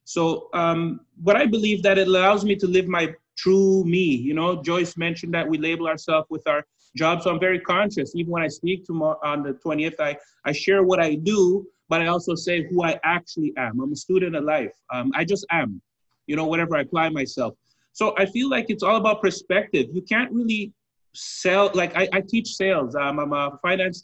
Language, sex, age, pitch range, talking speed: English, male, 30-49, 160-200 Hz, 215 wpm